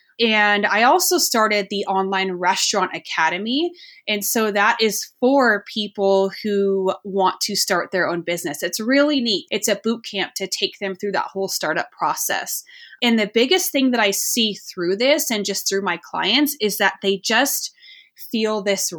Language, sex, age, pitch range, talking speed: English, female, 20-39, 190-245 Hz, 175 wpm